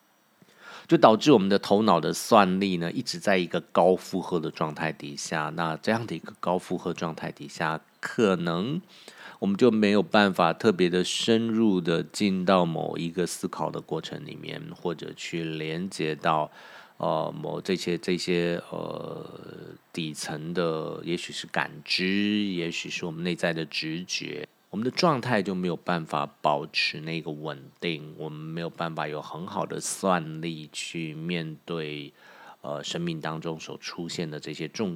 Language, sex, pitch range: Chinese, male, 80-95 Hz